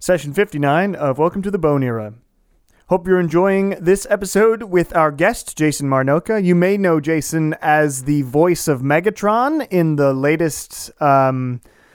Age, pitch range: 30-49, 130-175 Hz